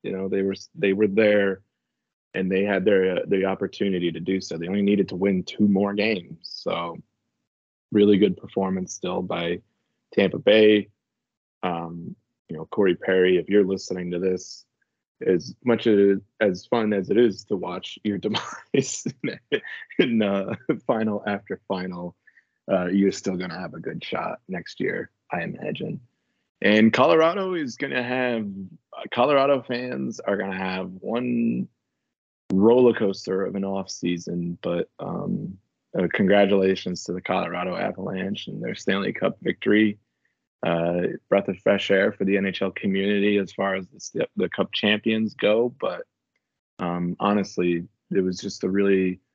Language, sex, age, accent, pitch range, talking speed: English, male, 20-39, American, 95-110 Hz, 155 wpm